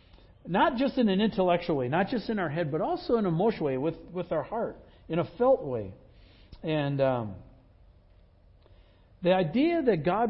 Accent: American